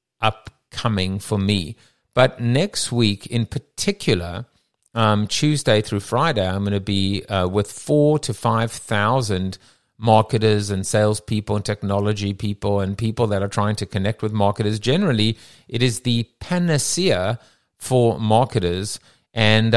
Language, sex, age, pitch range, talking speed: English, male, 50-69, 105-125 Hz, 140 wpm